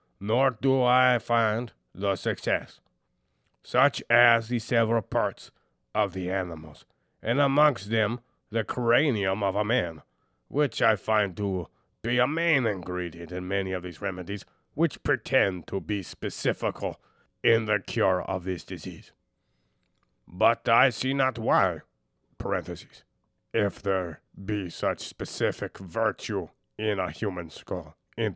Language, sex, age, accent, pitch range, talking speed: English, male, 30-49, American, 90-120 Hz, 130 wpm